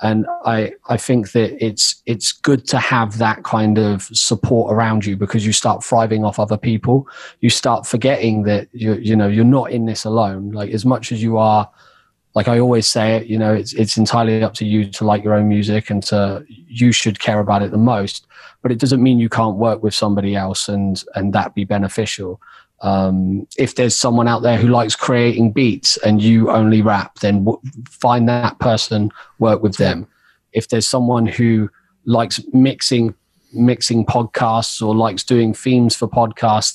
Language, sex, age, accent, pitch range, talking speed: English, male, 30-49, British, 105-120 Hz, 195 wpm